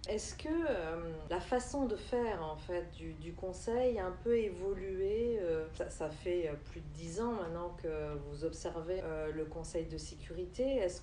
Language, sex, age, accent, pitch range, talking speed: French, female, 40-59, French, 155-190 Hz, 185 wpm